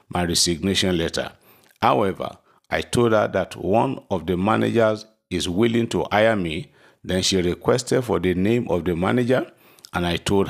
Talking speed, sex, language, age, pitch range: 165 wpm, male, English, 50-69, 90-110 Hz